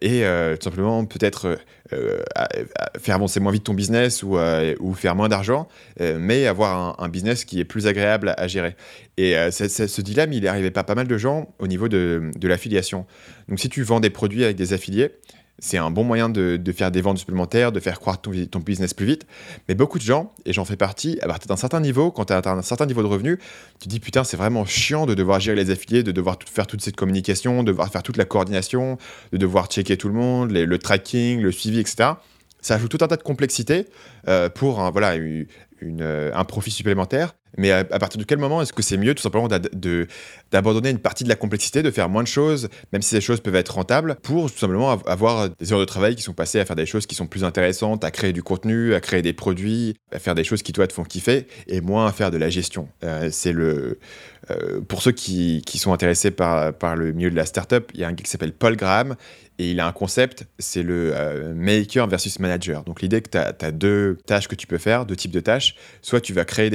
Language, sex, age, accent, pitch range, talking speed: French, male, 20-39, French, 90-115 Hz, 260 wpm